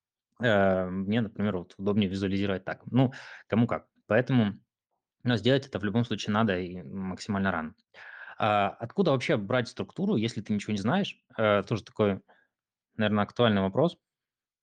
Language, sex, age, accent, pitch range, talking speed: Russian, male, 20-39, native, 100-115 Hz, 135 wpm